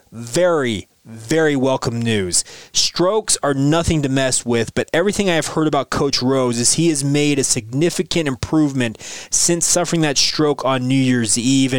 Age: 20-39